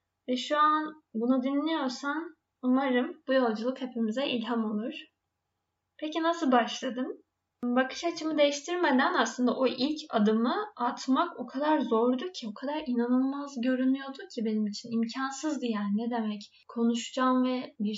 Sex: female